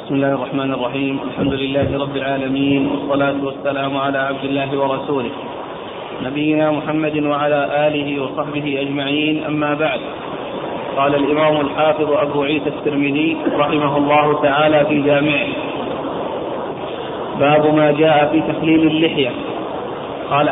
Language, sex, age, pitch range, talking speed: Arabic, male, 30-49, 145-155 Hz, 115 wpm